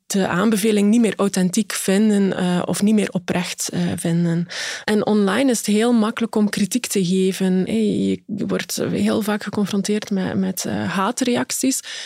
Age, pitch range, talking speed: 20-39, 200-235 Hz, 145 wpm